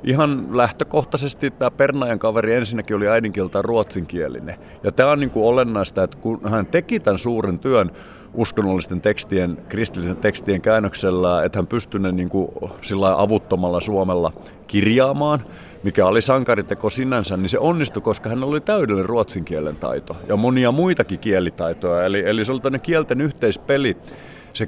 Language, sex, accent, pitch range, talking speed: Finnish, male, native, 95-120 Hz, 150 wpm